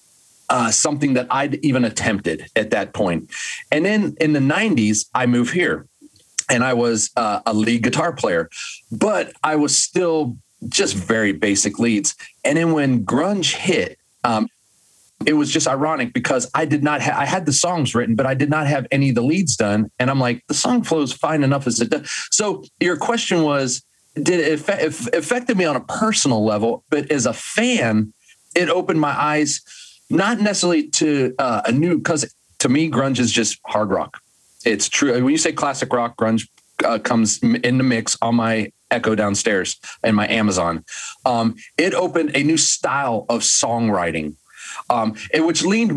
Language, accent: English, American